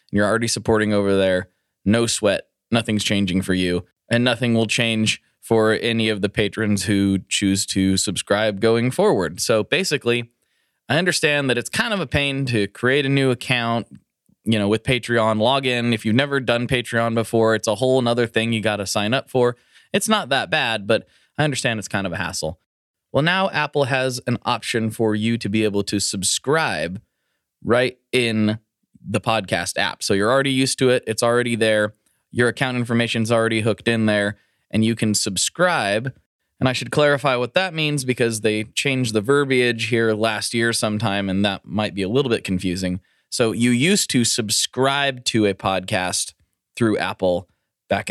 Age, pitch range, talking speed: 20-39, 100-125 Hz, 185 wpm